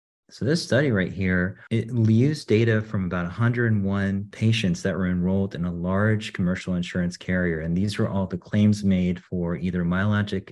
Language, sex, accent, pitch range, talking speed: English, male, American, 95-120 Hz, 175 wpm